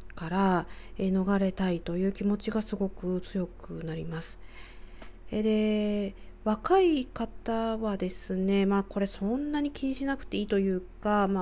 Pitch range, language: 180-225 Hz, Japanese